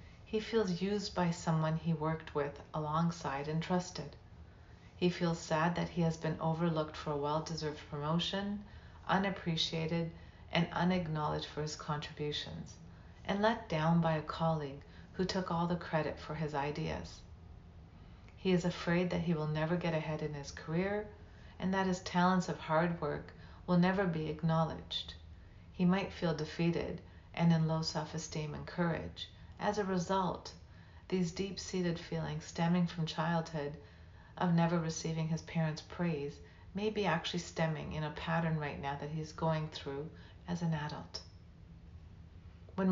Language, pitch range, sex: English, 145-175 Hz, female